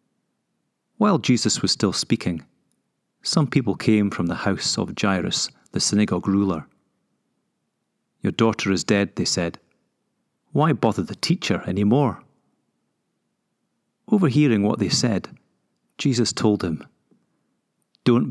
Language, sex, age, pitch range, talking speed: English, male, 30-49, 100-130 Hz, 120 wpm